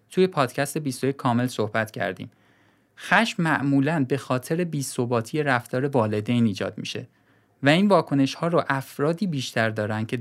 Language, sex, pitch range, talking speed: Persian, male, 115-160 Hz, 140 wpm